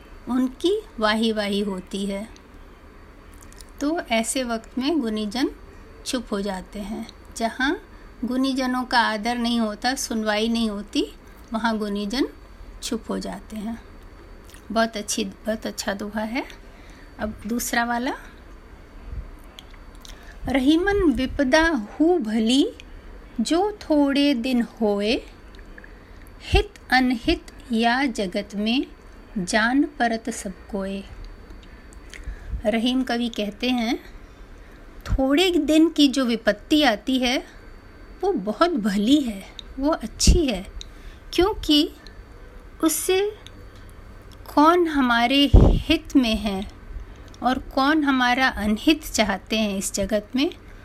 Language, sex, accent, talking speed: Hindi, female, native, 105 wpm